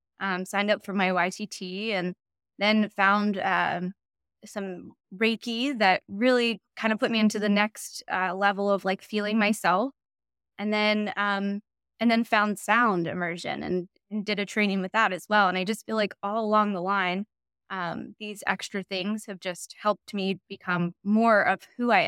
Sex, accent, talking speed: female, American, 180 wpm